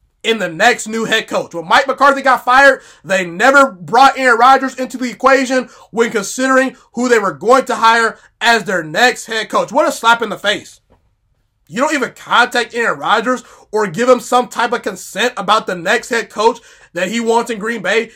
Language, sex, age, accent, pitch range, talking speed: English, male, 20-39, American, 215-255 Hz, 205 wpm